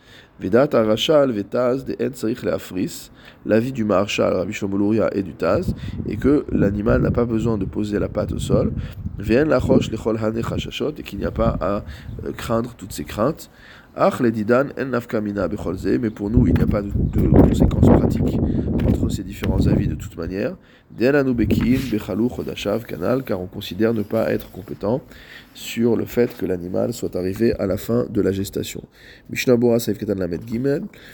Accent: French